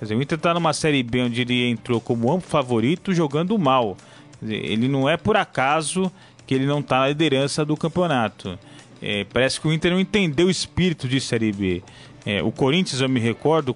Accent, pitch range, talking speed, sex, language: Brazilian, 120-160 Hz, 210 wpm, male, Portuguese